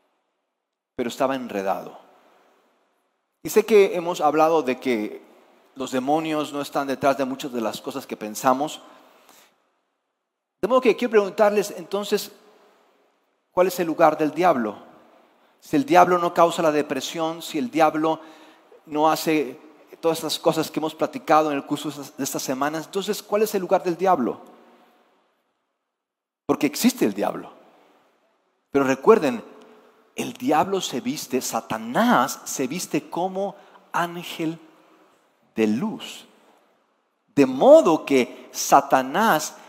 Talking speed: 130 wpm